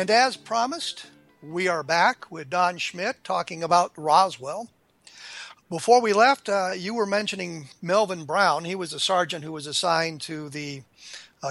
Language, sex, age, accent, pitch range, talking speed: English, male, 50-69, American, 160-200 Hz, 160 wpm